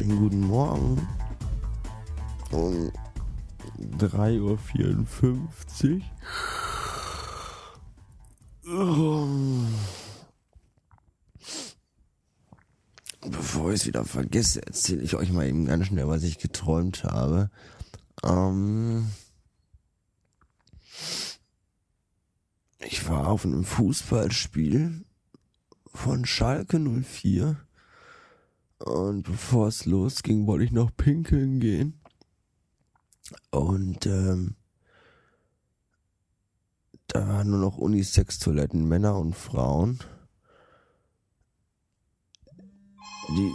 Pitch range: 90-130 Hz